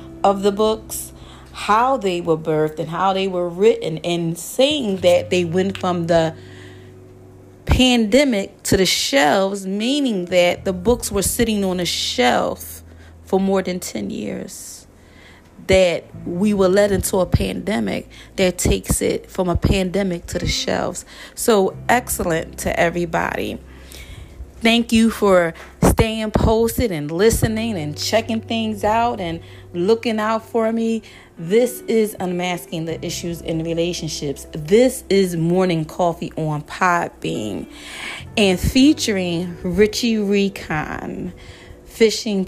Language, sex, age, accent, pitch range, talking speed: English, female, 30-49, American, 165-215 Hz, 130 wpm